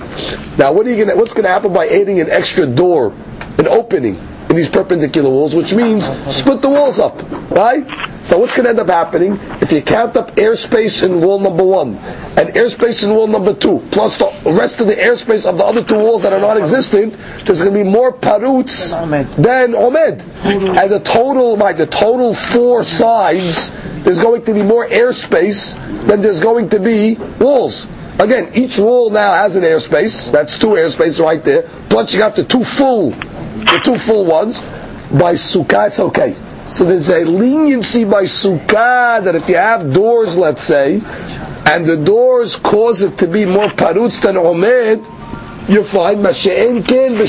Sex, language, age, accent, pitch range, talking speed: male, English, 50-69, American, 185-235 Hz, 175 wpm